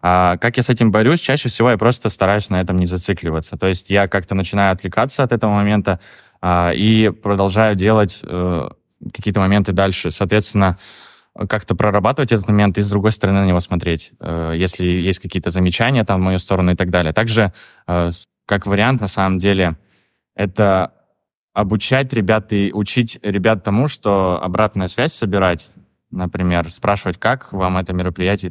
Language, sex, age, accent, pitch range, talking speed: Russian, male, 20-39, native, 90-105 Hz, 170 wpm